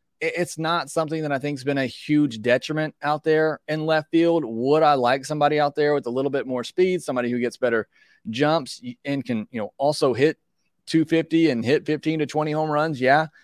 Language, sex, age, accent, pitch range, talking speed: English, male, 30-49, American, 125-150 Hz, 215 wpm